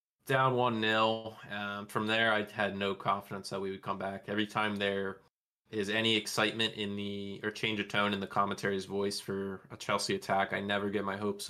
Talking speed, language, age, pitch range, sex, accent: 205 wpm, English, 20-39, 100-110 Hz, male, American